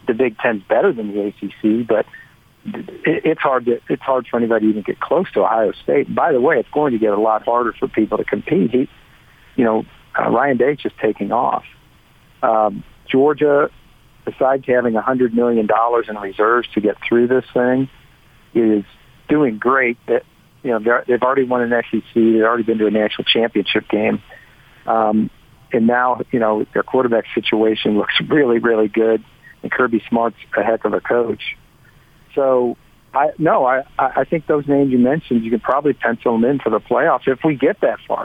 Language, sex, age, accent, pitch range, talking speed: English, male, 50-69, American, 110-135 Hz, 190 wpm